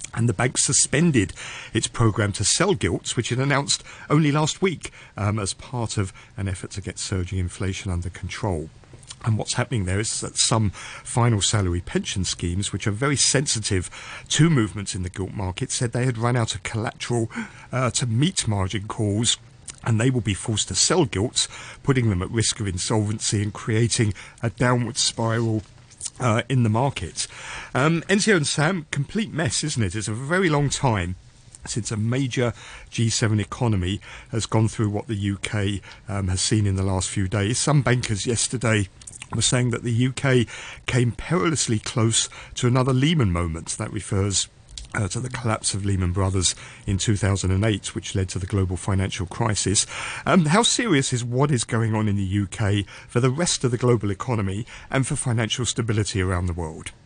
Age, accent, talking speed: 50-69, British, 180 wpm